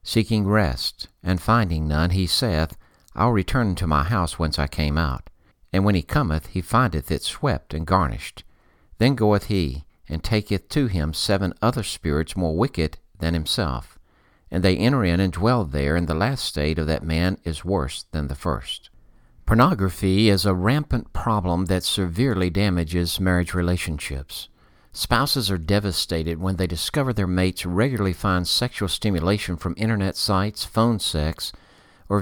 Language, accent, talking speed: English, American, 160 wpm